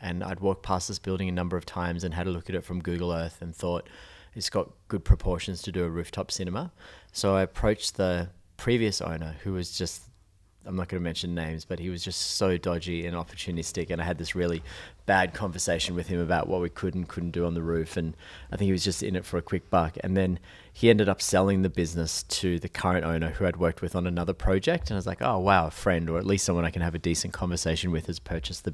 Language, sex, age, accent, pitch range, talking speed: English, male, 30-49, Australian, 85-95 Hz, 260 wpm